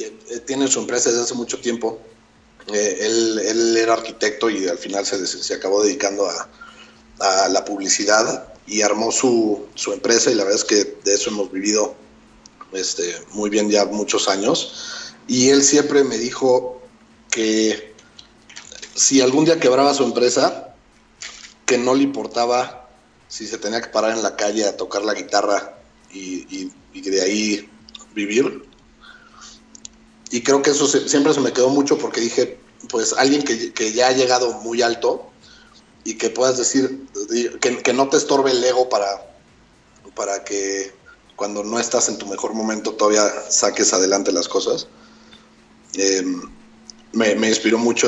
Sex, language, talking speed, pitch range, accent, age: male, Spanish, 160 wpm, 105-135 Hz, Mexican, 40-59